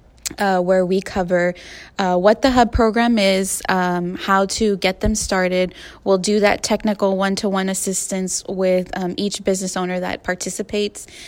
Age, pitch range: 20-39, 185-215 Hz